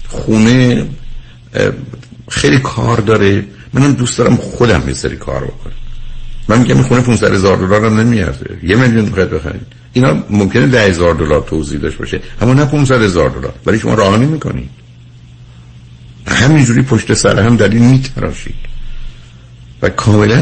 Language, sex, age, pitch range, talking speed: Persian, male, 60-79, 75-120 Hz, 140 wpm